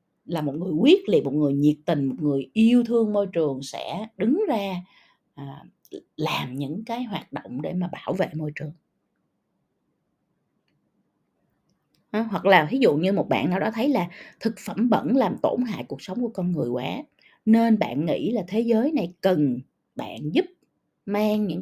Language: Vietnamese